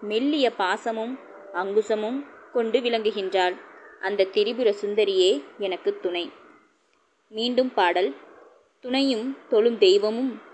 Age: 20-39